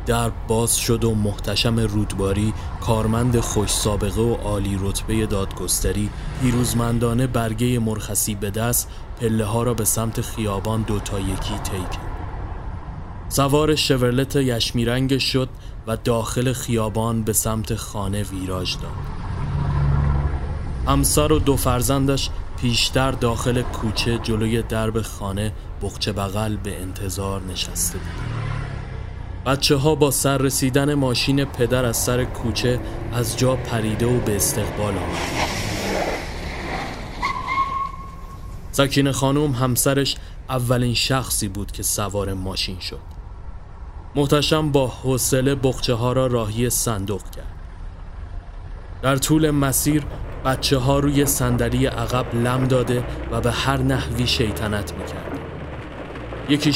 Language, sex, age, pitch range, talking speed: Persian, male, 30-49, 100-130 Hz, 115 wpm